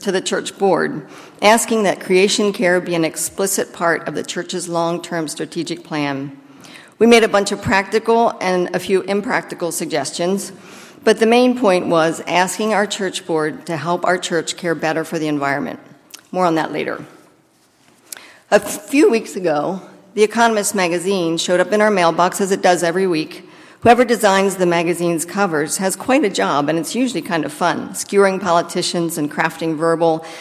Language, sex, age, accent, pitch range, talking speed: English, female, 50-69, American, 165-200 Hz, 175 wpm